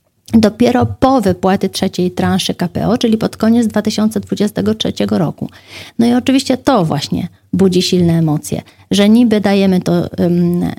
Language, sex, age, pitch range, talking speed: Polish, female, 30-49, 175-215 Hz, 135 wpm